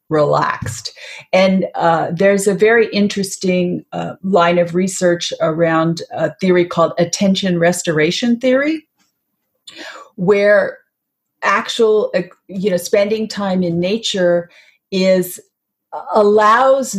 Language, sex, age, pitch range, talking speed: English, female, 40-59, 170-210 Hz, 100 wpm